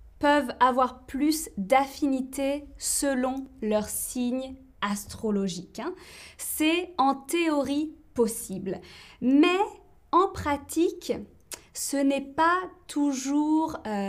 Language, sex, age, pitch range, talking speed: French, female, 20-39, 220-290 Hz, 80 wpm